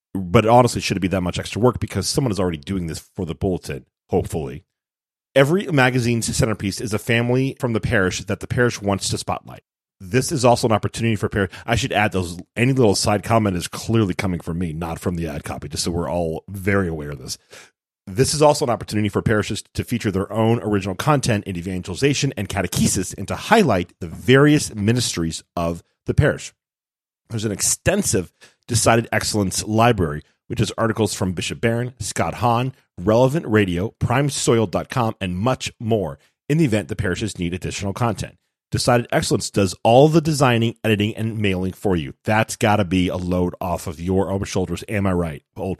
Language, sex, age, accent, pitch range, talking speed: English, male, 40-59, American, 95-120 Hz, 195 wpm